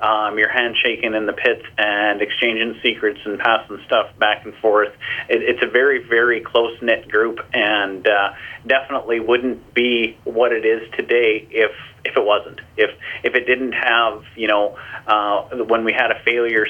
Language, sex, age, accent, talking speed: English, male, 30-49, American, 175 wpm